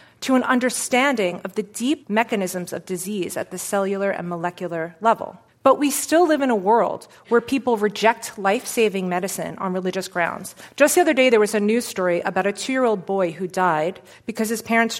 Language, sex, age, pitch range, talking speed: English, female, 30-49, 190-260 Hz, 190 wpm